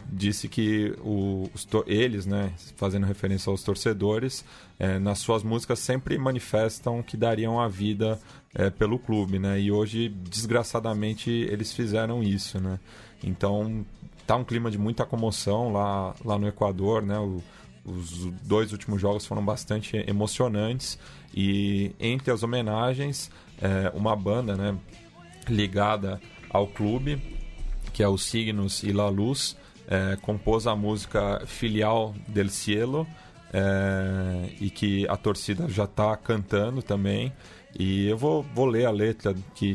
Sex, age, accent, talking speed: male, 20-39, Brazilian, 135 wpm